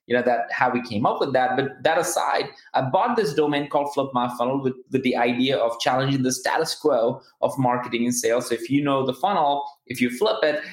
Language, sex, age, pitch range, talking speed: English, male, 20-39, 130-195 Hz, 240 wpm